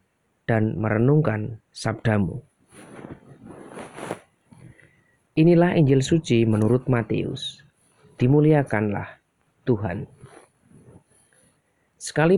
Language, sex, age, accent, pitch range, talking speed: Indonesian, male, 30-49, native, 115-150 Hz, 55 wpm